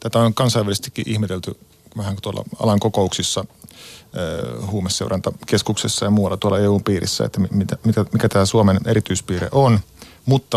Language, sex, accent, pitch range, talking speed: Finnish, male, native, 90-110 Hz, 130 wpm